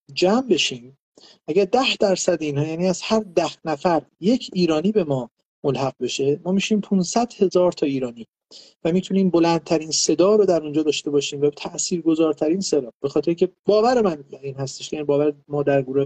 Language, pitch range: Persian, 145-195 Hz